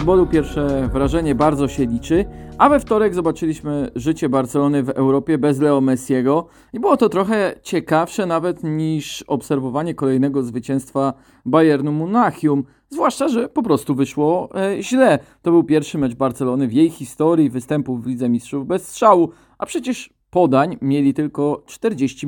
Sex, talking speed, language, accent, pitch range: male, 150 wpm, Polish, native, 140-185 Hz